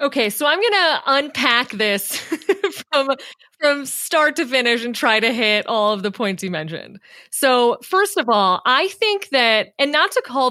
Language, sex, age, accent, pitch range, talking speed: English, female, 30-49, American, 195-290 Hz, 190 wpm